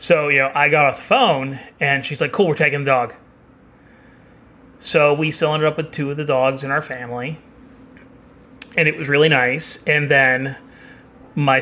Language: English